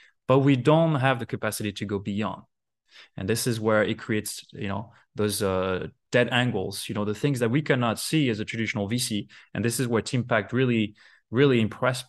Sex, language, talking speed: male, English, 210 wpm